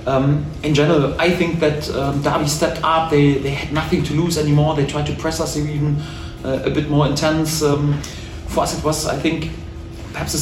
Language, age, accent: English, 30-49, German